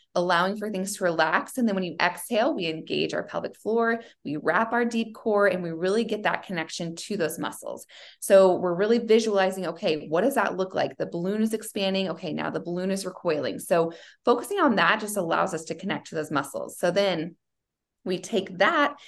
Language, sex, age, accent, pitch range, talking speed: English, female, 20-39, American, 175-215 Hz, 210 wpm